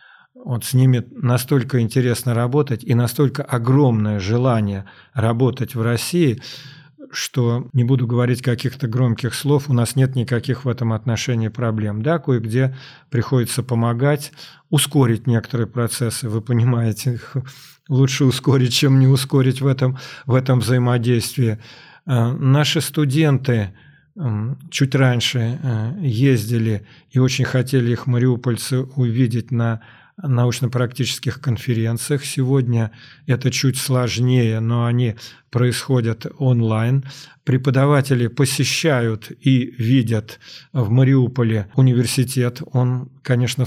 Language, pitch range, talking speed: Russian, 120-135 Hz, 110 wpm